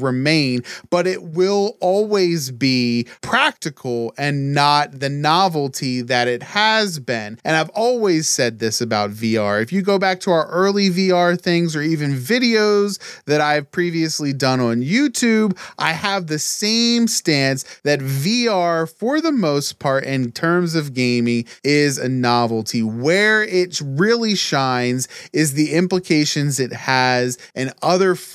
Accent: American